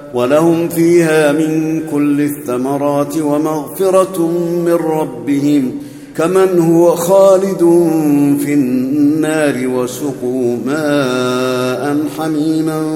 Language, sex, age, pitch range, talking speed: Arabic, male, 50-69, 125-155 Hz, 75 wpm